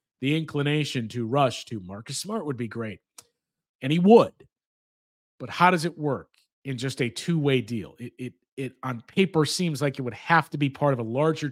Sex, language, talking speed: male, English, 205 wpm